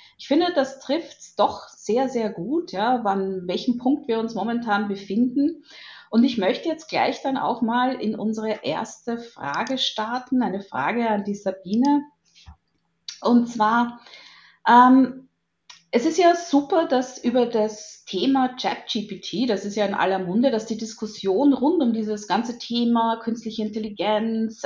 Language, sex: English, female